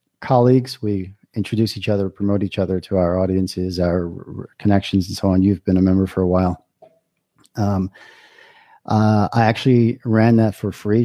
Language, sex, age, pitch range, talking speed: English, male, 40-59, 95-115 Hz, 170 wpm